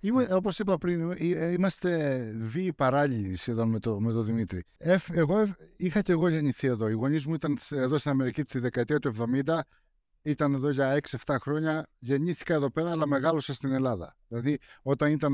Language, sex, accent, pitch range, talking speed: Greek, male, native, 135-175 Hz, 160 wpm